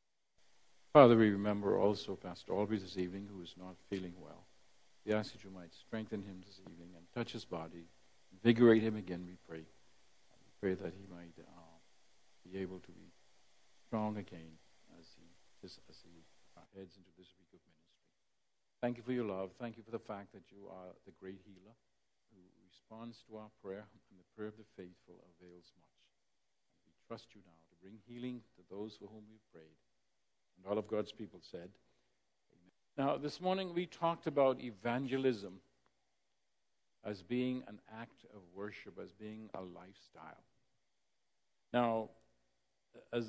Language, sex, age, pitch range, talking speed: English, male, 60-79, 90-115 Hz, 170 wpm